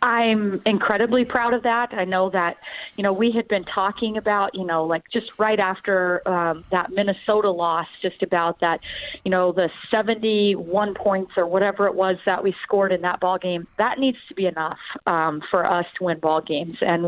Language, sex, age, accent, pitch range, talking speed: English, female, 30-49, American, 180-205 Hz, 200 wpm